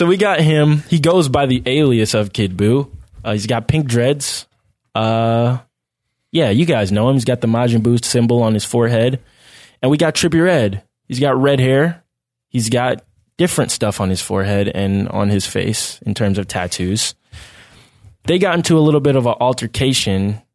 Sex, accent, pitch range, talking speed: male, American, 105-135 Hz, 190 wpm